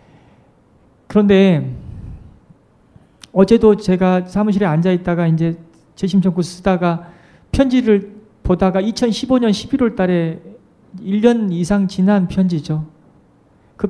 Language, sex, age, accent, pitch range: Korean, male, 40-59, native, 170-220 Hz